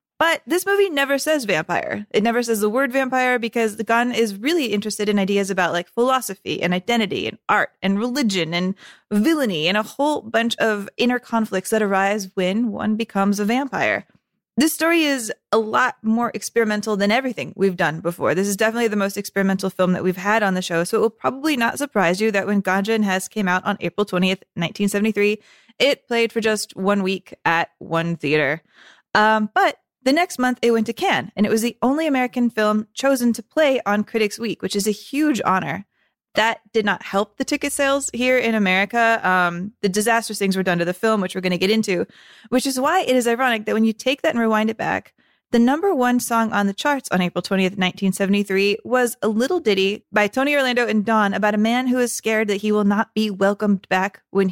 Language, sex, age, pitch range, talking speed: English, female, 20-39, 195-240 Hz, 220 wpm